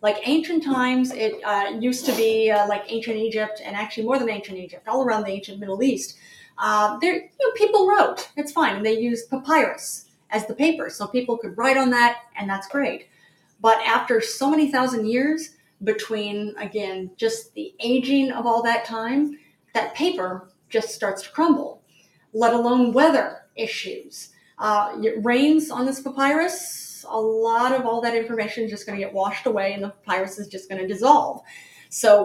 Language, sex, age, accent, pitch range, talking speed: English, female, 30-49, American, 205-260 Hz, 190 wpm